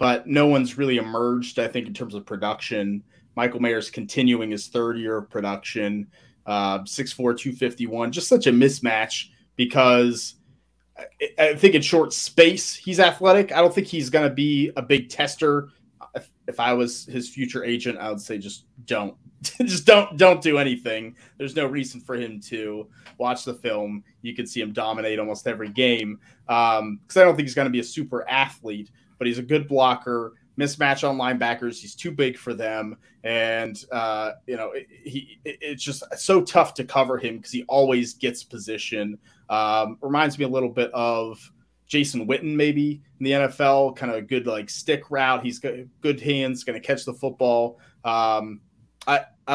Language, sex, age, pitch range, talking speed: English, male, 30-49, 115-140 Hz, 185 wpm